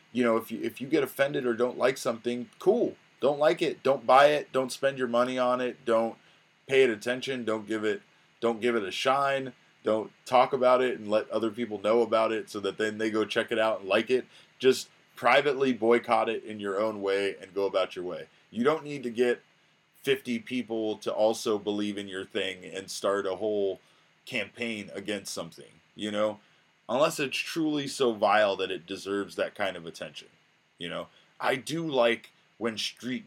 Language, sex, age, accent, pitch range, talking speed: English, male, 20-39, American, 100-125 Hz, 205 wpm